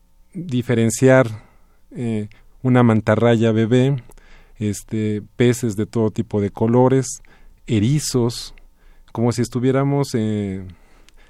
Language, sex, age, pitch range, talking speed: Spanish, male, 40-59, 110-130 Hz, 85 wpm